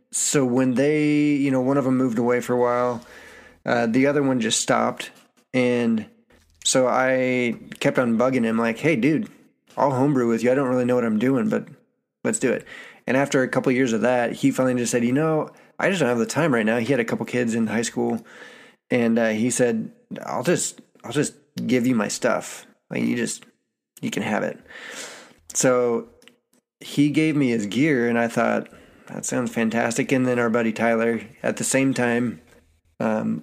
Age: 20-39